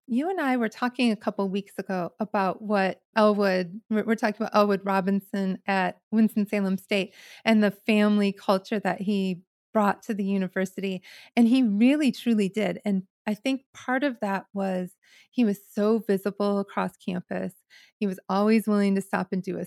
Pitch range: 195-235 Hz